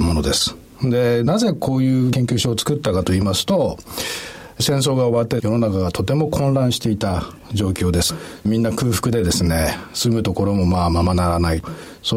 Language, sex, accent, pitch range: Japanese, male, native, 100-150 Hz